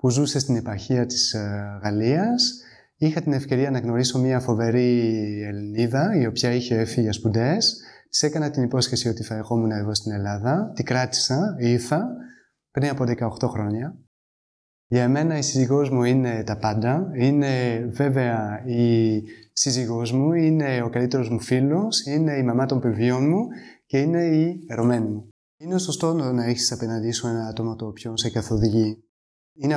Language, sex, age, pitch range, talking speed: Greek, male, 30-49, 115-145 Hz, 160 wpm